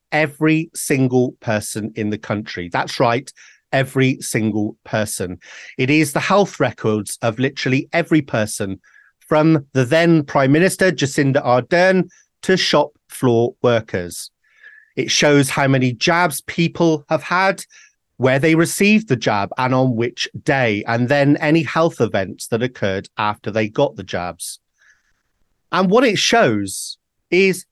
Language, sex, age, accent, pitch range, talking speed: English, male, 30-49, British, 115-160 Hz, 140 wpm